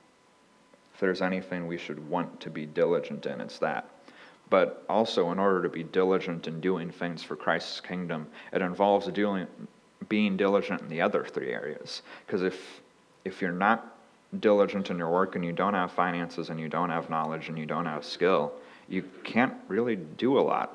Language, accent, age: English, American, 30-49